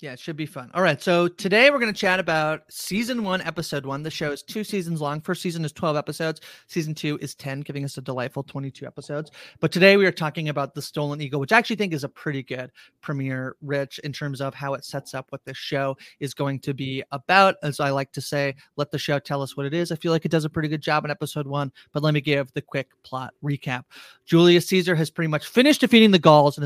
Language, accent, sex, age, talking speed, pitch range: English, American, male, 30-49, 260 wpm, 145-185 Hz